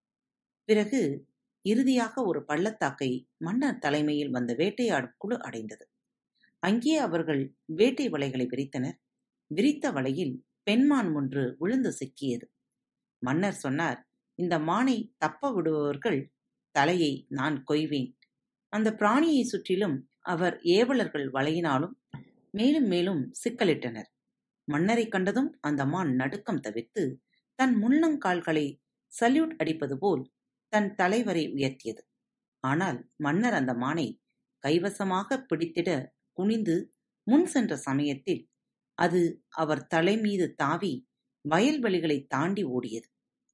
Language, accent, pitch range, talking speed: Tamil, native, 140-225 Hz, 100 wpm